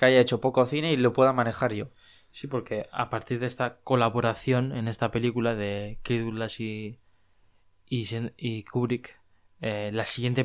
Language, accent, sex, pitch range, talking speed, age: Spanish, Spanish, male, 110-130 Hz, 170 wpm, 20-39